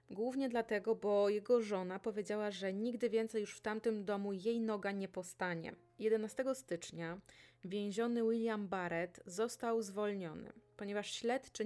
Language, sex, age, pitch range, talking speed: Polish, female, 20-39, 185-220 Hz, 135 wpm